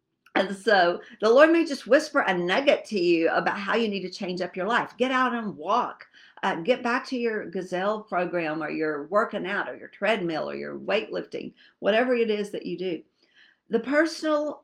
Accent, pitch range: American, 180-255 Hz